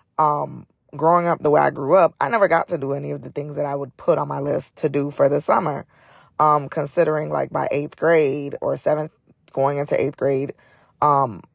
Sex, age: female, 20-39